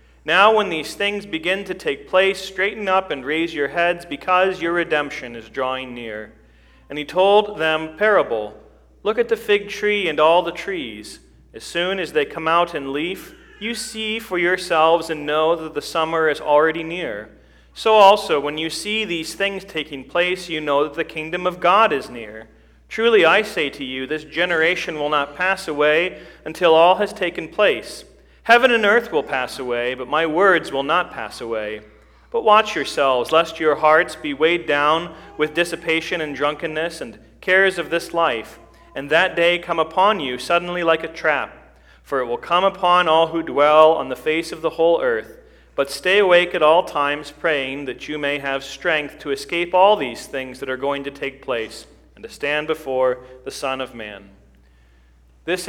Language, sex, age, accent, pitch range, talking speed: English, male, 40-59, American, 140-180 Hz, 190 wpm